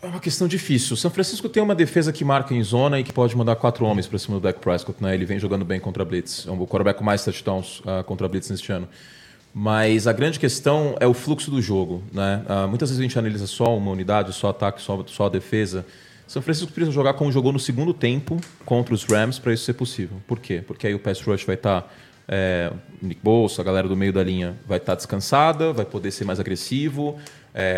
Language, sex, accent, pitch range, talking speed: English, male, Brazilian, 100-130 Hz, 240 wpm